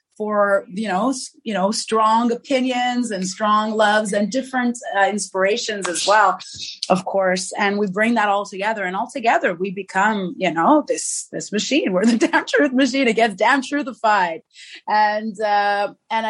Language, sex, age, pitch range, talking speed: English, female, 30-49, 185-230 Hz, 170 wpm